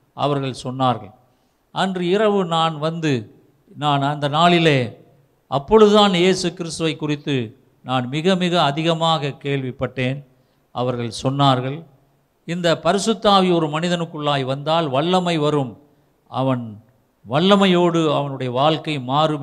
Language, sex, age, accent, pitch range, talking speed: Tamil, male, 50-69, native, 130-165 Hz, 100 wpm